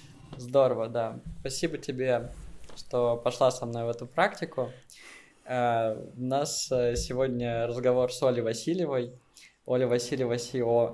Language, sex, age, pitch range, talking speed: Russian, male, 20-39, 120-135 Hz, 115 wpm